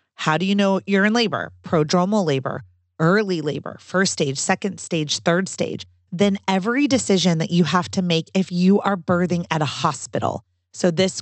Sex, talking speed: female, 180 wpm